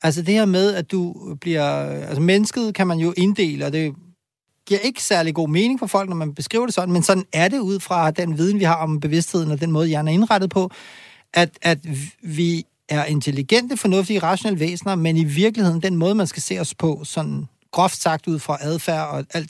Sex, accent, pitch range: male, native, 155-200 Hz